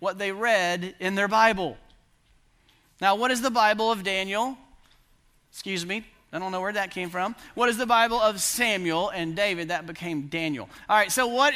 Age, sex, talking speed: 40-59, male, 190 wpm